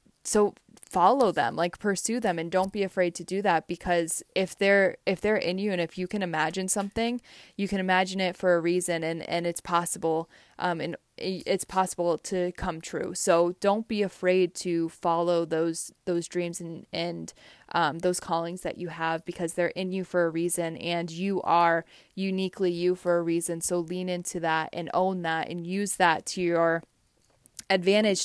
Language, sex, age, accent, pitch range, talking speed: English, female, 20-39, American, 170-190 Hz, 190 wpm